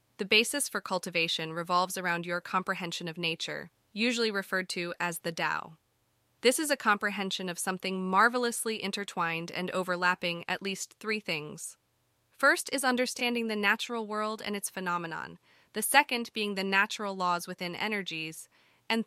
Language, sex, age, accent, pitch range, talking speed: English, female, 20-39, American, 185-240 Hz, 150 wpm